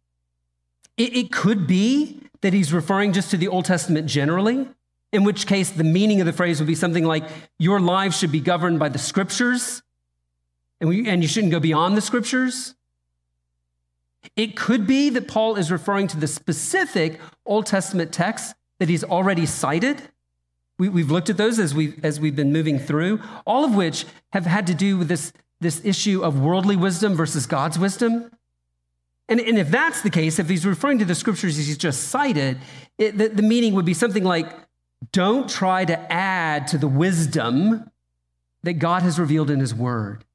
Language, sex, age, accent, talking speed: English, male, 40-59, American, 175 wpm